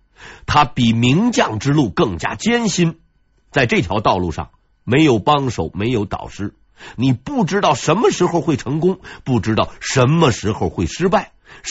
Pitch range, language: 120-190 Hz, Chinese